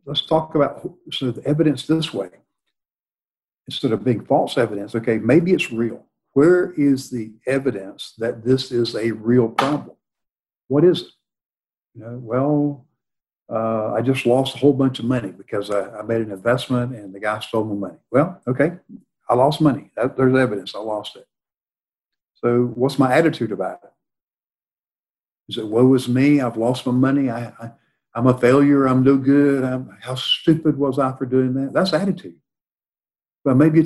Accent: American